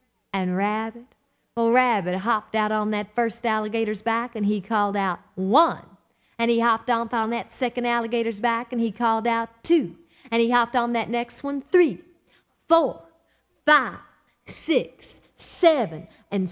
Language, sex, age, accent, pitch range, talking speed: English, female, 40-59, American, 230-300 Hz, 155 wpm